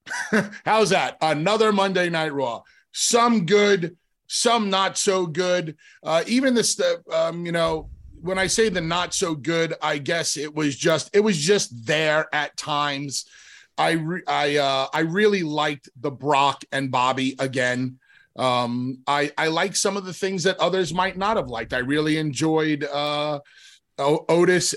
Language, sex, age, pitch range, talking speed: English, male, 30-49, 145-180 Hz, 160 wpm